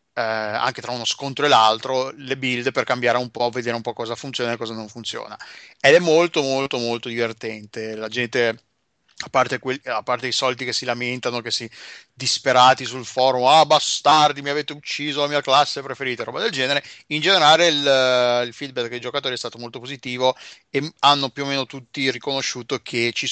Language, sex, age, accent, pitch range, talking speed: Italian, male, 30-49, native, 120-145 Hz, 195 wpm